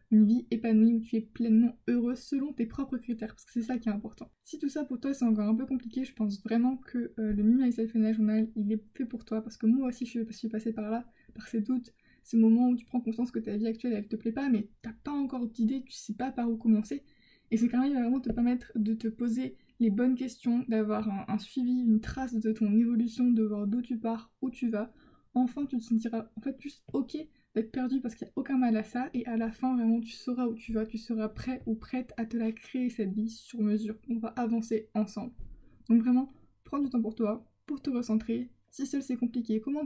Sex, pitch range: female, 220-250 Hz